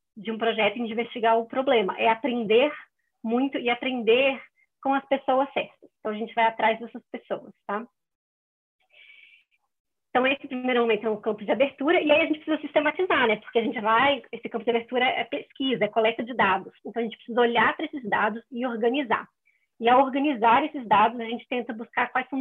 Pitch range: 230-275 Hz